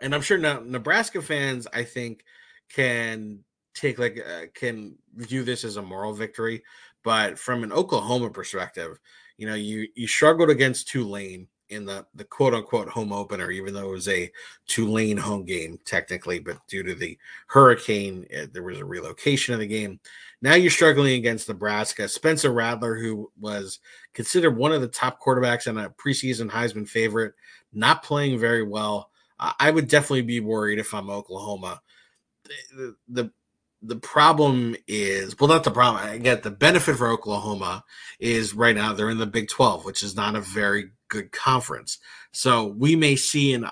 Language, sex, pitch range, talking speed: English, male, 105-130 Hz, 175 wpm